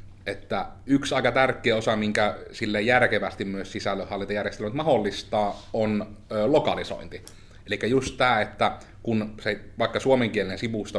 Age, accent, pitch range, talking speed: 30-49, native, 100-120 Hz, 125 wpm